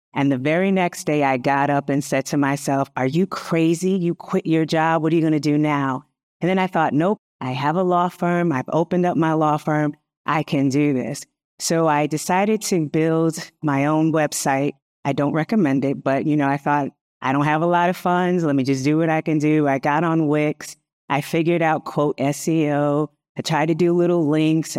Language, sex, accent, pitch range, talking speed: English, female, American, 140-170 Hz, 225 wpm